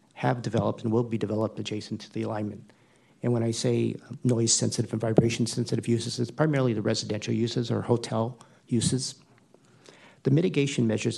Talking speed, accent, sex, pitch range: 165 wpm, American, male, 110-125 Hz